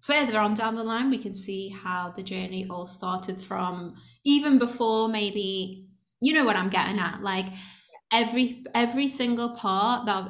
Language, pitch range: English, 190-230 Hz